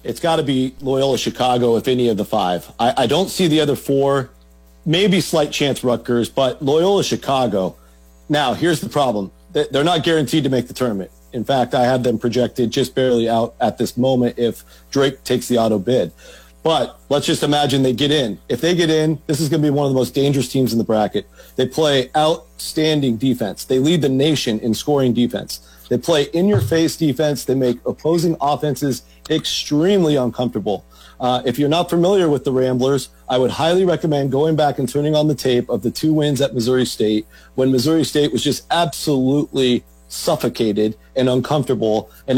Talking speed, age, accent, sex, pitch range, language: 190 wpm, 40-59, American, male, 120-150 Hz, English